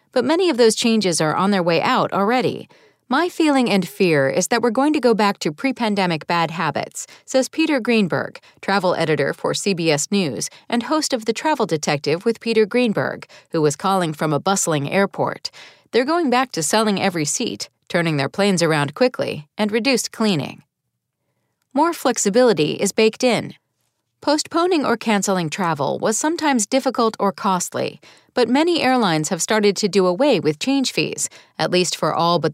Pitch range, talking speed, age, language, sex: 170-250 Hz, 175 wpm, 40-59, English, female